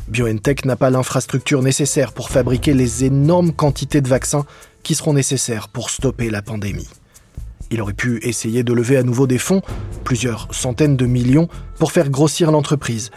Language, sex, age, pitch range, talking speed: French, male, 20-39, 120-150 Hz, 170 wpm